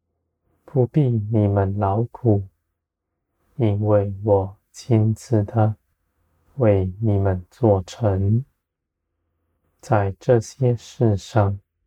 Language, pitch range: Chinese, 85-110 Hz